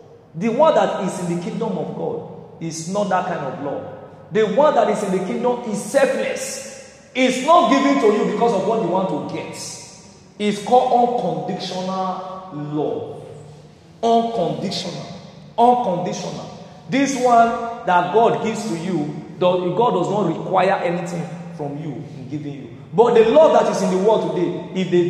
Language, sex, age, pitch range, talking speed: English, male, 40-59, 160-225 Hz, 165 wpm